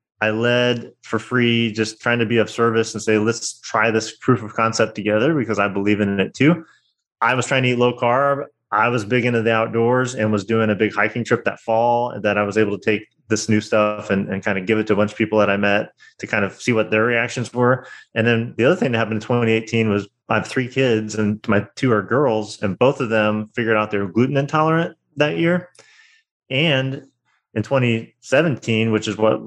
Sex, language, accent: male, English, American